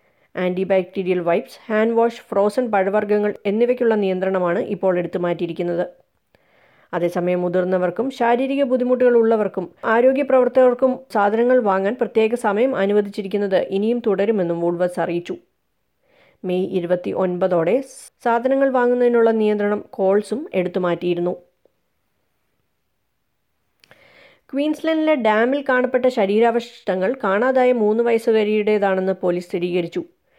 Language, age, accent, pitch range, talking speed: Malayalam, 30-49, native, 180-235 Hz, 80 wpm